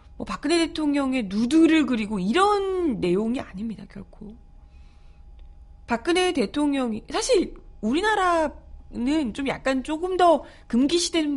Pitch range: 205-315 Hz